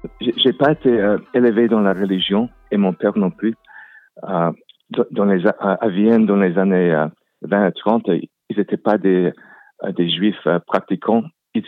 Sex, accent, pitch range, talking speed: male, French, 90-110 Hz, 185 wpm